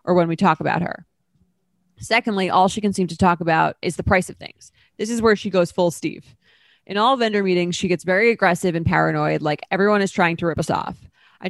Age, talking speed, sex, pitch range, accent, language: 20-39, 235 wpm, female, 165-195 Hz, American, English